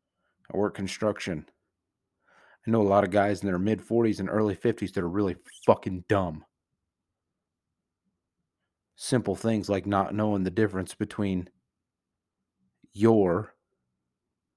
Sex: male